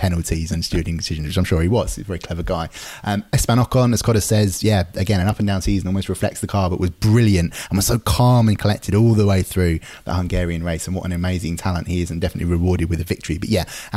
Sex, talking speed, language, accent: male, 260 wpm, English, British